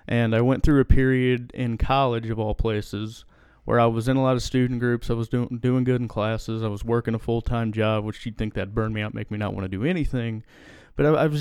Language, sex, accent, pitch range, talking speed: English, male, American, 115-130 Hz, 270 wpm